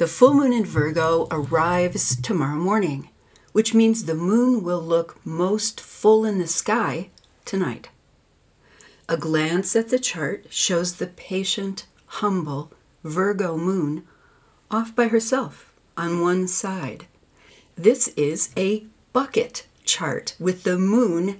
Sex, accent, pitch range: female, American, 165-220 Hz